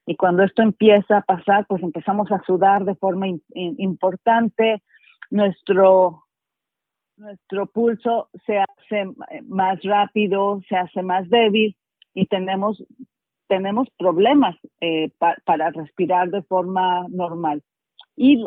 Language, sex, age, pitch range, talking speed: Spanish, female, 40-59, 180-215 Hz, 125 wpm